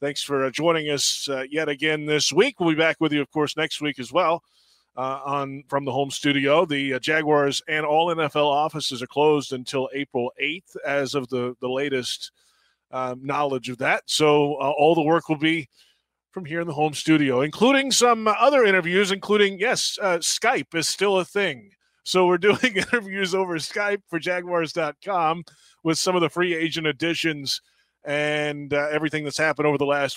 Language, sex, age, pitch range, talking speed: English, male, 30-49, 135-165 Hz, 190 wpm